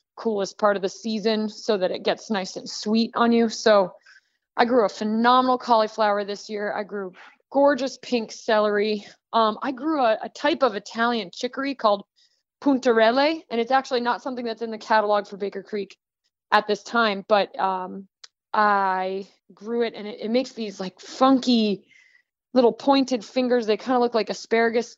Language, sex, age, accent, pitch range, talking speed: English, female, 20-39, American, 205-245 Hz, 180 wpm